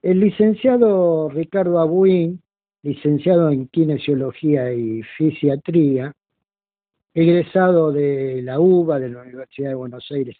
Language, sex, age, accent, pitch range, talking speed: Spanish, male, 50-69, Argentinian, 120-165 Hz, 110 wpm